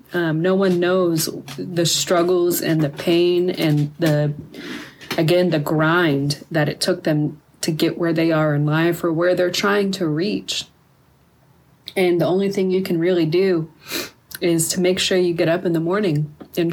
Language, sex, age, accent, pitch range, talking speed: English, female, 30-49, American, 155-185 Hz, 180 wpm